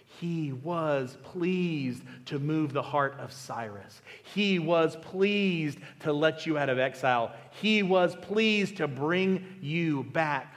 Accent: American